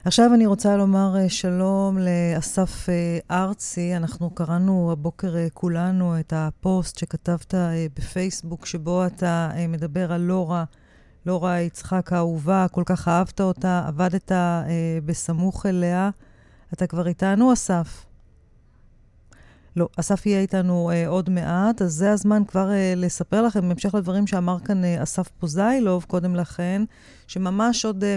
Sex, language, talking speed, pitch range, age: female, Hebrew, 130 wpm, 175-200 Hz, 30-49